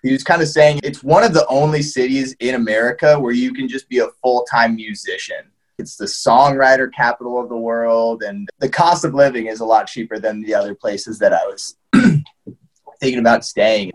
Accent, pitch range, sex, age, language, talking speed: American, 100-130 Hz, male, 20-39, English, 200 wpm